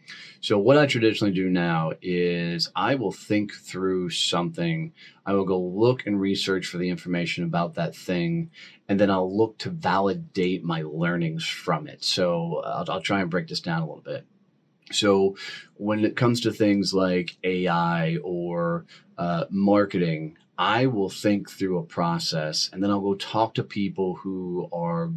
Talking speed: 170 wpm